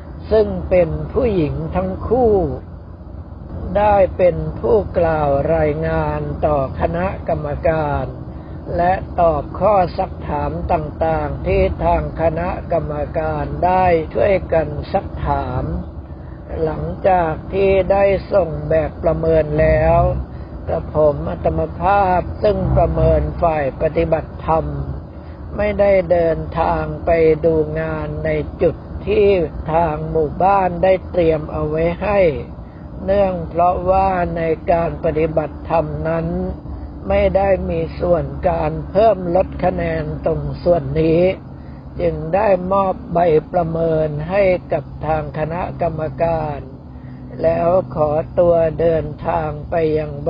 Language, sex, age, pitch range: Thai, male, 60-79, 145-175 Hz